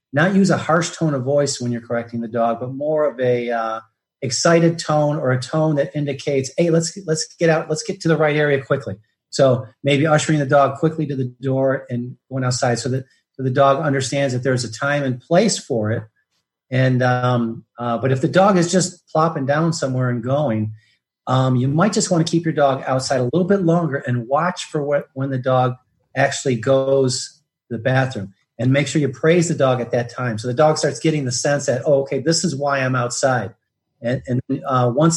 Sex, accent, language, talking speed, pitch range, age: male, American, English, 225 wpm, 120-150 Hz, 40-59